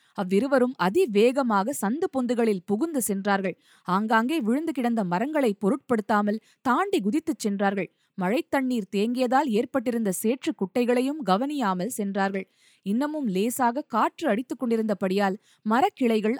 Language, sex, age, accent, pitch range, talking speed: Tamil, female, 20-39, native, 200-265 Hz, 100 wpm